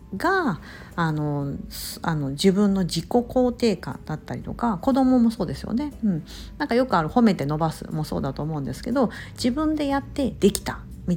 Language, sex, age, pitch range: Japanese, female, 50-69, 160-240 Hz